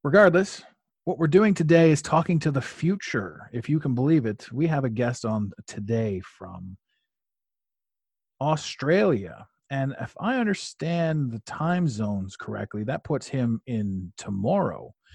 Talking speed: 145 wpm